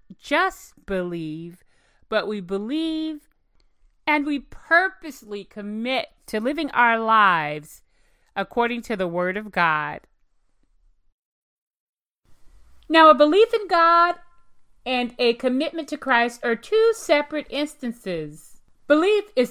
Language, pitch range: English, 210-295 Hz